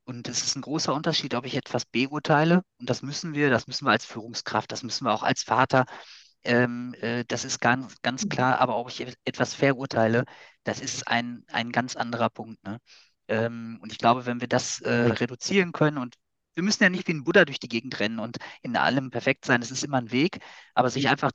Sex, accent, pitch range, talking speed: male, German, 115-140 Hz, 225 wpm